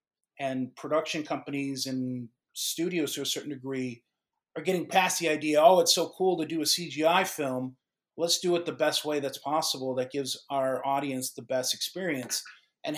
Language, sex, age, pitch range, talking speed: English, male, 30-49, 135-170 Hz, 180 wpm